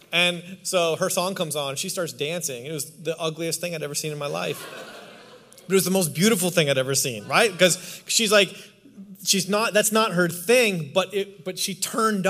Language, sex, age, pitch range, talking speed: English, male, 30-49, 165-205 Hz, 220 wpm